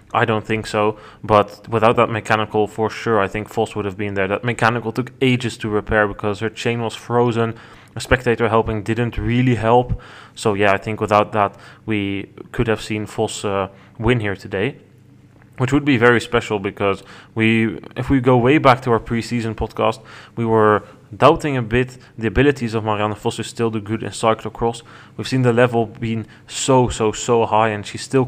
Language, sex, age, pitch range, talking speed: English, male, 20-39, 105-125 Hz, 195 wpm